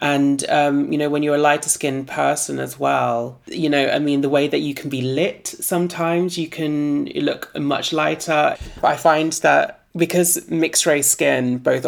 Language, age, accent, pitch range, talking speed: English, 30-49, British, 130-150 Hz, 185 wpm